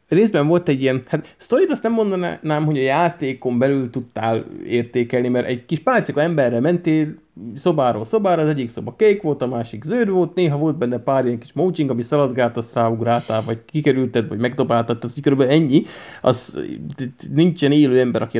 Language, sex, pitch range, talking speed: Hungarian, male, 120-175 Hz, 170 wpm